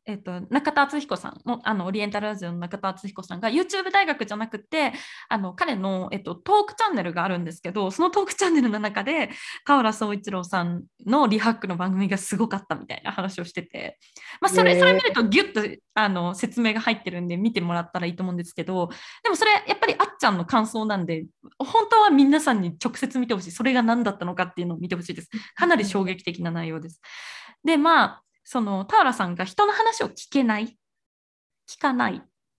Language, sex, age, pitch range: Japanese, female, 20-39, 185-290 Hz